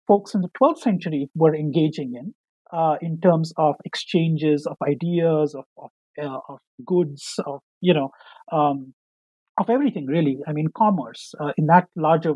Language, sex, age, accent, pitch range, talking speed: English, male, 50-69, Indian, 155-215 Hz, 165 wpm